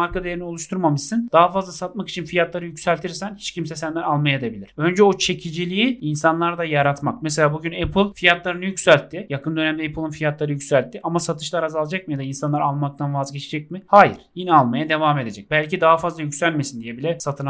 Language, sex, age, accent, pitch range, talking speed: Turkish, male, 30-49, native, 150-190 Hz, 180 wpm